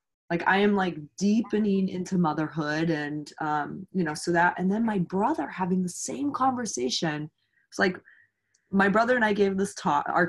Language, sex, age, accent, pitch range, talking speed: English, female, 20-39, American, 170-205 Hz, 180 wpm